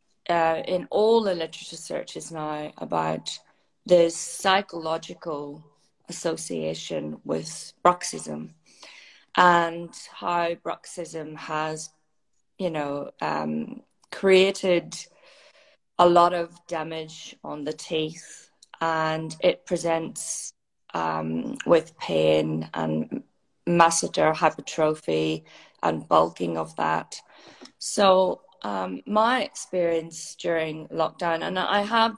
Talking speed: 90 wpm